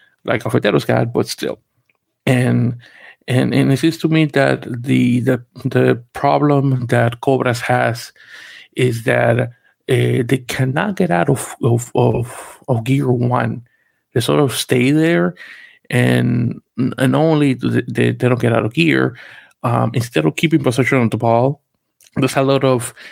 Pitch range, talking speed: 115-135 Hz, 165 wpm